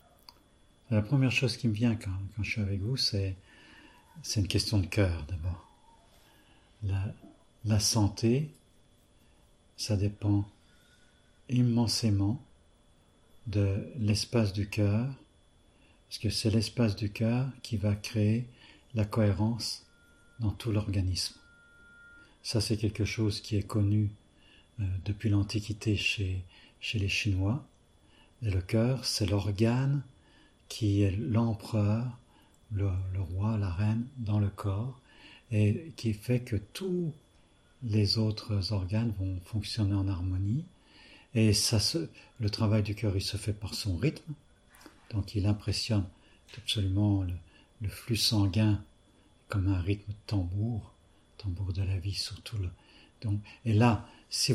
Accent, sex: French, male